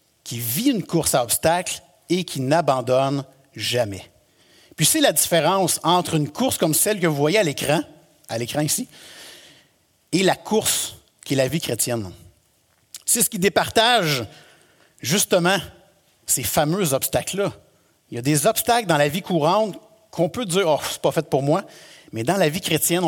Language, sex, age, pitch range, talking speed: French, male, 60-79, 135-195 Hz, 175 wpm